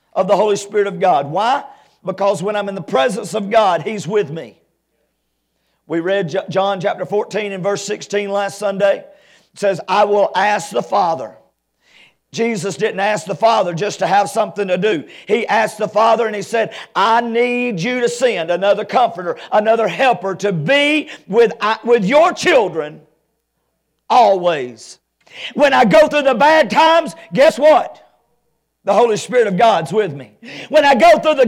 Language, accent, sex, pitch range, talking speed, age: English, American, male, 195-300 Hz, 170 wpm, 50-69